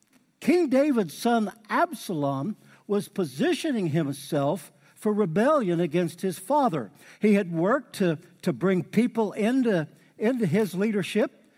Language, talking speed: English, 120 wpm